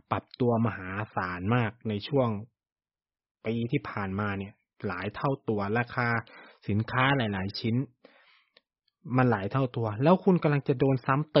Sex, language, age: male, Thai, 20-39